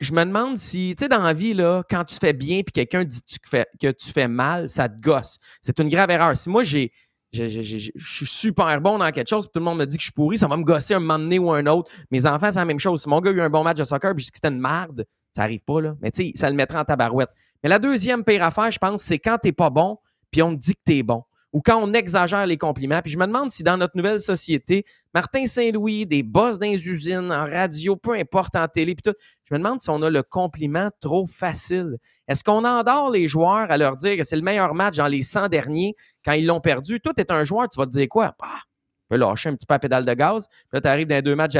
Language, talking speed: French, 295 wpm